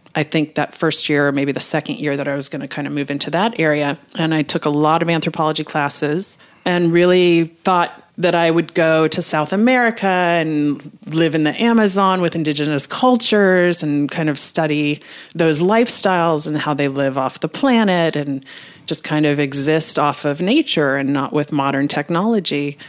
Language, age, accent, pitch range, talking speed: English, 30-49, American, 150-195 Hz, 190 wpm